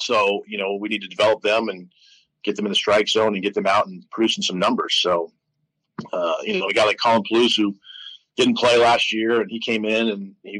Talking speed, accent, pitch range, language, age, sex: 245 wpm, American, 105-125 Hz, English, 40-59, male